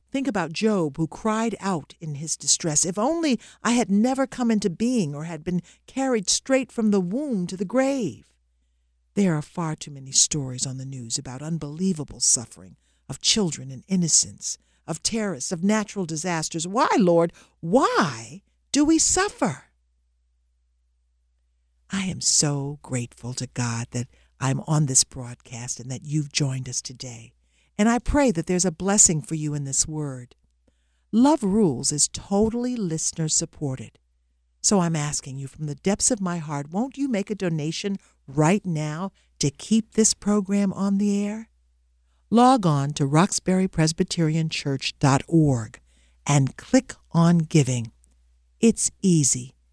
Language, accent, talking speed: English, American, 150 wpm